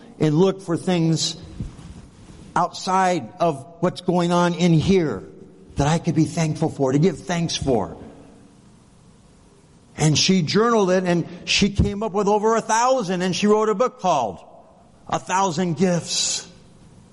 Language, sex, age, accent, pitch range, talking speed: English, male, 50-69, American, 135-180 Hz, 145 wpm